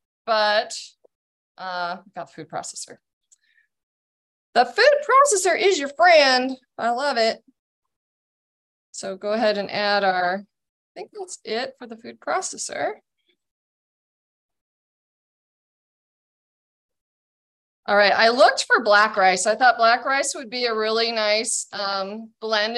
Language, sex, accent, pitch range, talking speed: English, female, American, 210-285 Hz, 125 wpm